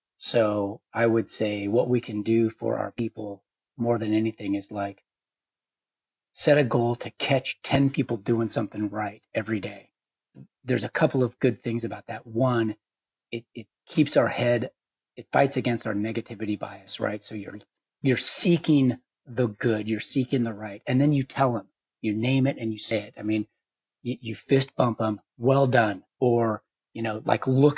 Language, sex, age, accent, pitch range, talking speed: English, male, 30-49, American, 110-130 Hz, 185 wpm